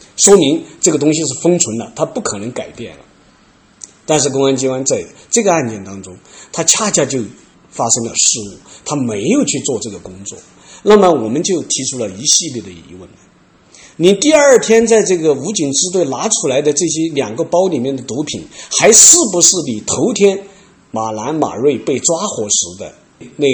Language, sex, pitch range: Chinese, male, 115-190 Hz